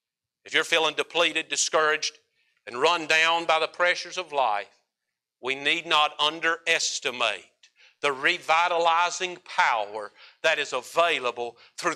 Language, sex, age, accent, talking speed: English, male, 50-69, American, 120 wpm